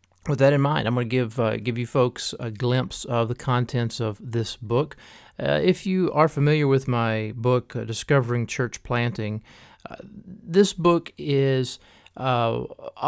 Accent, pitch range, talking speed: American, 115-135 Hz, 170 wpm